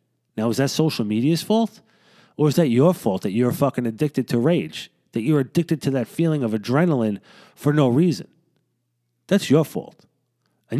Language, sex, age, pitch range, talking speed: English, male, 30-49, 125-175 Hz, 180 wpm